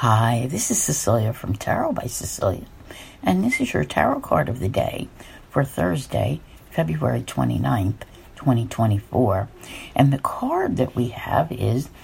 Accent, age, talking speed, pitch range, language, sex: American, 60-79, 145 wpm, 110-145 Hz, English, female